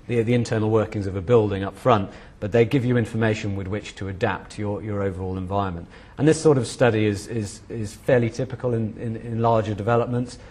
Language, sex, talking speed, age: English, male, 205 wpm, 40-59